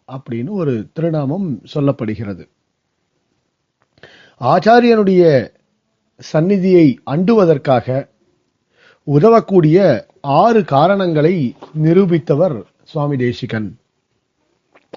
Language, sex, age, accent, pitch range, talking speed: Tamil, male, 40-59, native, 145-200 Hz, 50 wpm